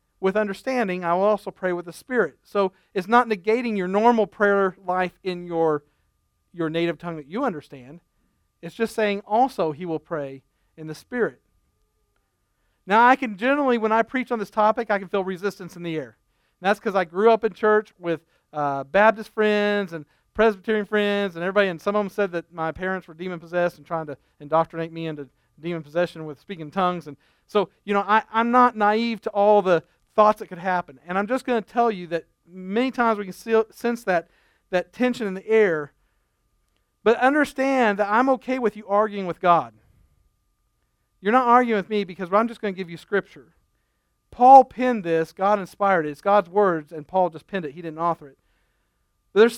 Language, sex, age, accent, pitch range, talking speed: English, male, 40-59, American, 165-215 Hz, 205 wpm